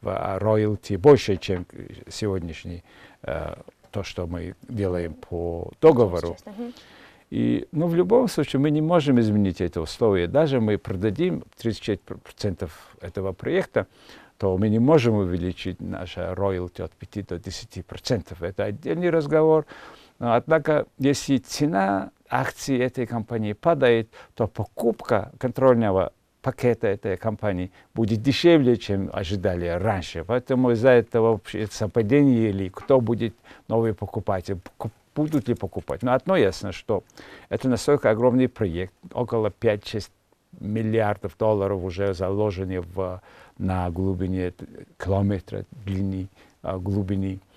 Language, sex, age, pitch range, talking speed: Russian, male, 50-69, 95-120 Hz, 120 wpm